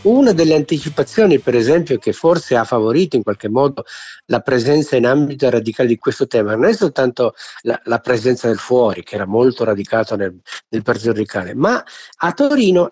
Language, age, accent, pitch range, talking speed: Italian, 50-69, native, 115-165 Hz, 180 wpm